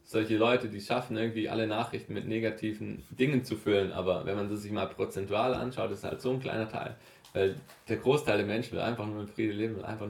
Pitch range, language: 105-125 Hz, German